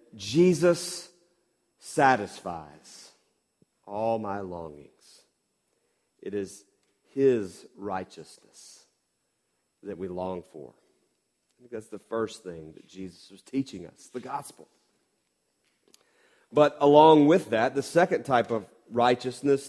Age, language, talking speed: 40-59, English, 100 wpm